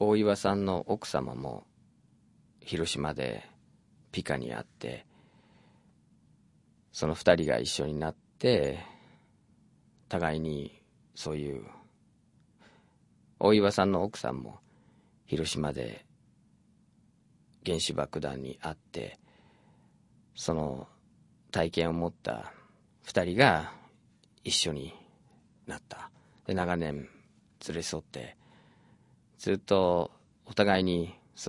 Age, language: 40-59, Japanese